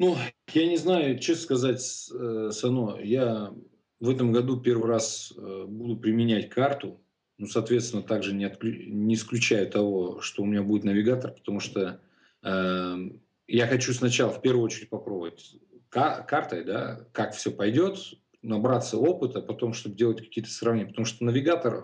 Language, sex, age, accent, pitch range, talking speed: Russian, male, 40-59, native, 110-125 Hz, 145 wpm